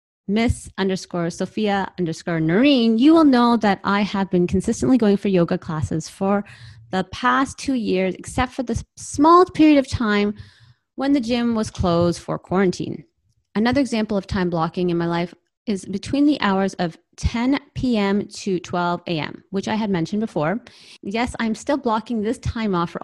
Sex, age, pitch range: female, 30-49, 180-235 Hz